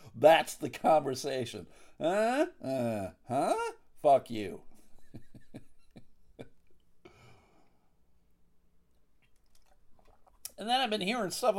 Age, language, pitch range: 50-69, English, 130-215 Hz